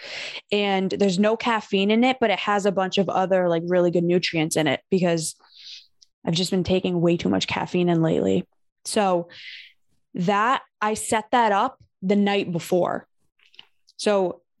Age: 20-39